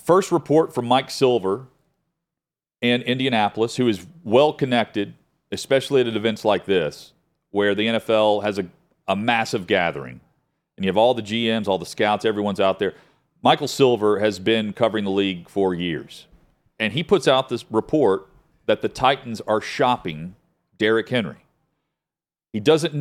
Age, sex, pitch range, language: 40-59, male, 105-145 Hz, English